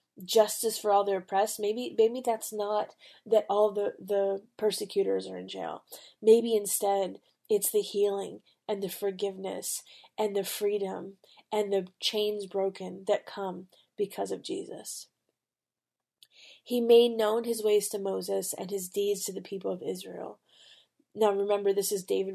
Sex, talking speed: female, 155 wpm